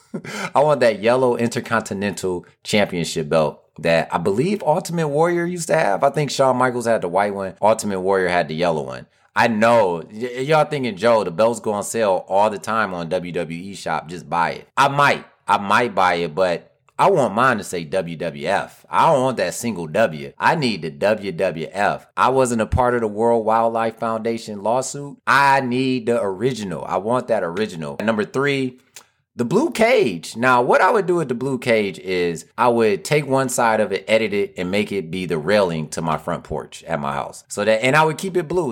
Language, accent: English, American